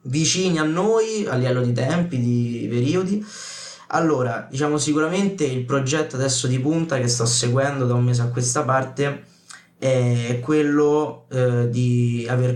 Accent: native